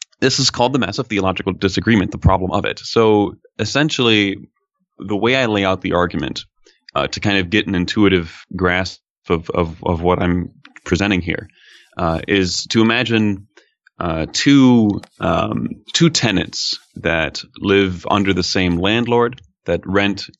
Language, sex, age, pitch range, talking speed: English, male, 30-49, 90-115 Hz, 155 wpm